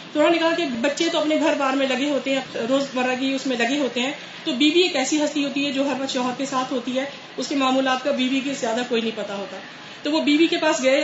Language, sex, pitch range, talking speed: Urdu, female, 265-315 Hz, 275 wpm